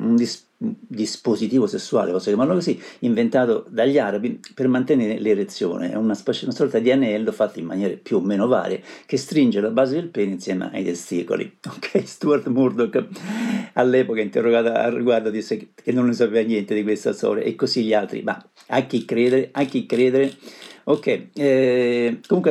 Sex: male